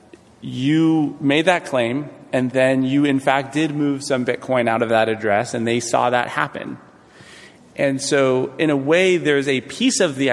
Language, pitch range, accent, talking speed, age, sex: English, 115-140 Hz, American, 185 wpm, 30-49, male